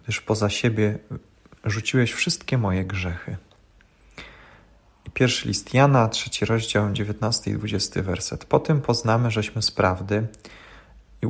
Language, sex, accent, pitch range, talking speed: Polish, male, native, 100-120 Hz, 125 wpm